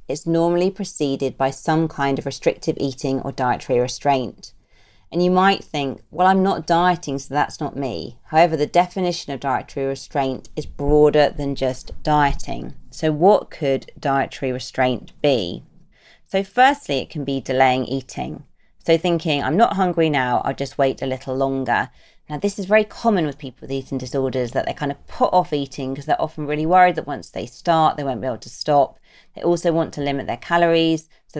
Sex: female